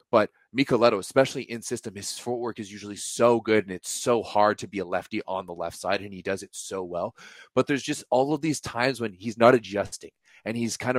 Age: 30-49